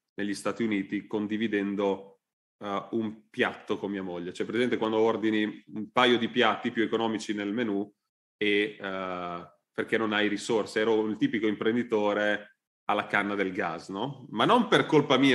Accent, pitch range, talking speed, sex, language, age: native, 100-125 Hz, 170 wpm, male, Italian, 30-49